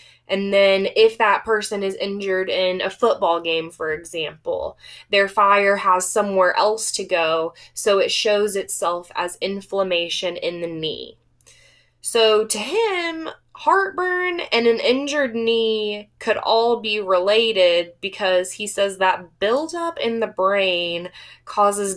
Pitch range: 175-245 Hz